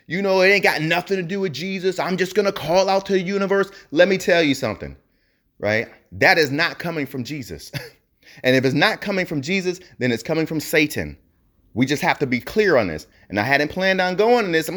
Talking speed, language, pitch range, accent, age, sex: 245 wpm, English, 135-195 Hz, American, 30-49, male